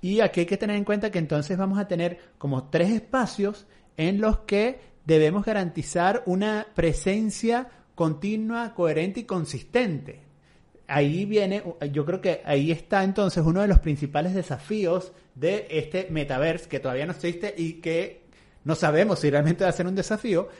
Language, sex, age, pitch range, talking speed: Spanish, male, 30-49, 160-205 Hz, 165 wpm